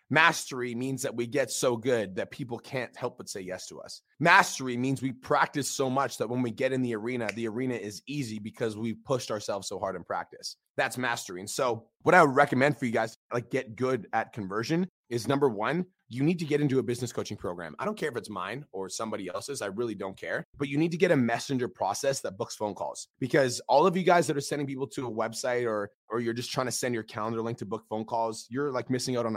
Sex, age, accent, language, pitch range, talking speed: male, 30-49, American, English, 110-135 Hz, 255 wpm